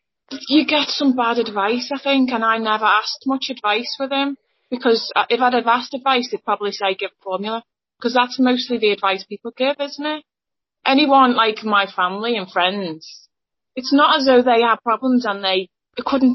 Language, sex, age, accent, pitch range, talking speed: English, female, 20-39, British, 200-250 Hz, 185 wpm